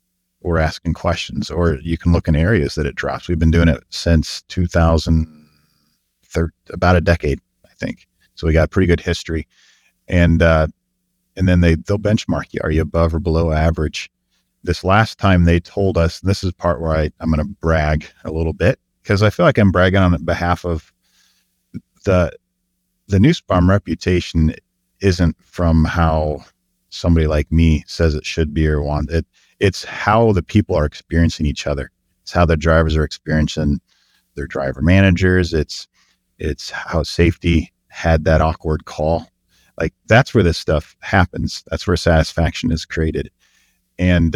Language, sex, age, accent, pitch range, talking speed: English, male, 40-59, American, 80-90 Hz, 170 wpm